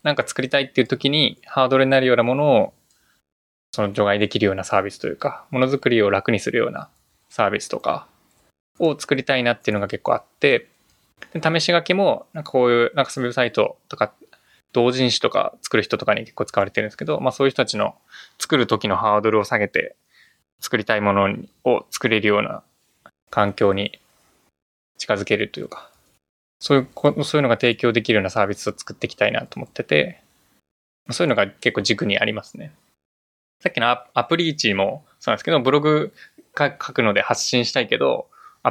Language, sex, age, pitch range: Japanese, male, 20-39, 105-140 Hz